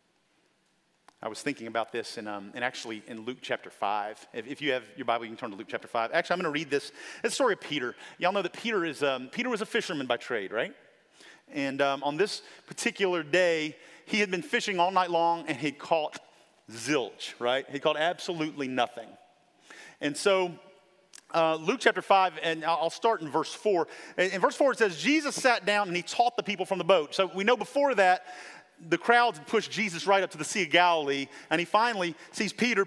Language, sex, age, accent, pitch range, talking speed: English, male, 40-59, American, 155-220 Hz, 225 wpm